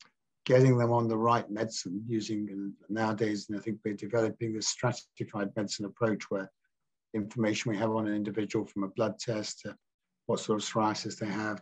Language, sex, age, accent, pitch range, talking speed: English, male, 50-69, British, 100-115 Hz, 190 wpm